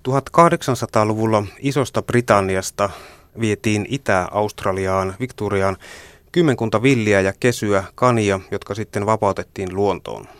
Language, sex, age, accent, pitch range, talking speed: Finnish, male, 30-49, native, 95-115 Hz, 85 wpm